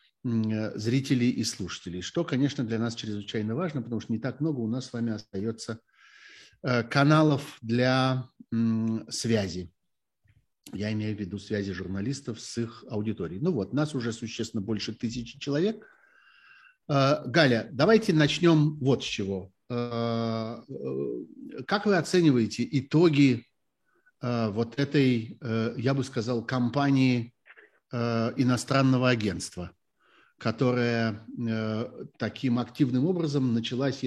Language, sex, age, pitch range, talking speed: Russian, male, 50-69, 110-135 Hz, 110 wpm